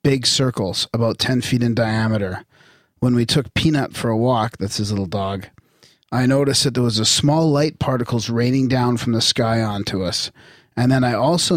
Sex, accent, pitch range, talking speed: male, American, 110-140 Hz, 195 wpm